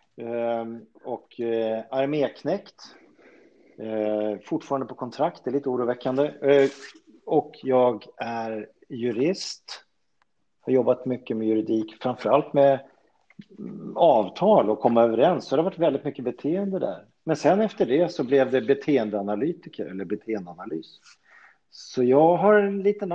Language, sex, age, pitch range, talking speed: Swedish, male, 40-59, 115-145 Hz, 120 wpm